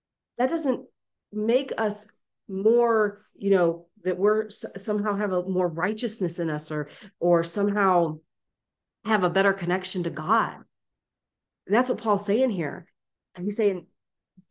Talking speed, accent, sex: 145 wpm, American, female